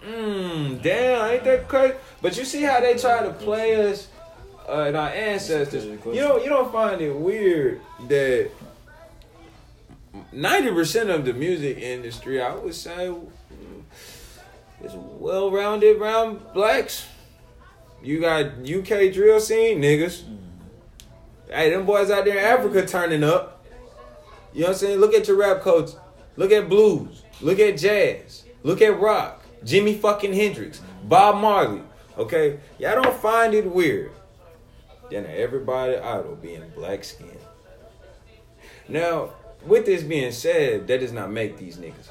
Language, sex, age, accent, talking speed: English, male, 20-39, American, 140 wpm